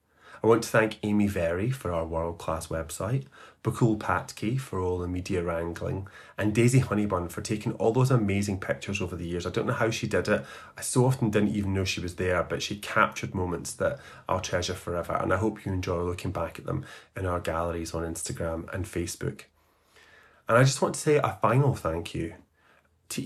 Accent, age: British, 30-49